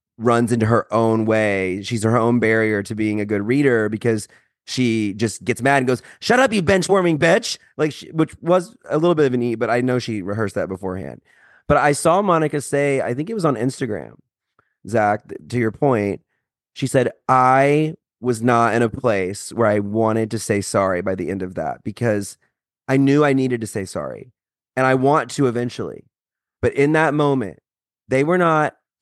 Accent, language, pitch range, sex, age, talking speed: American, English, 110-145 Hz, male, 30-49, 200 wpm